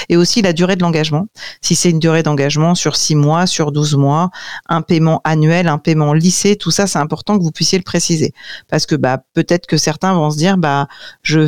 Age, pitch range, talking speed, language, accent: 40-59, 155-195 Hz, 225 wpm, French, French